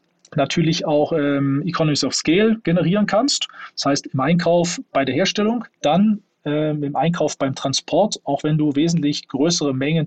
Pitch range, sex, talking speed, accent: 140-175 Hz, male, 160 wpm, German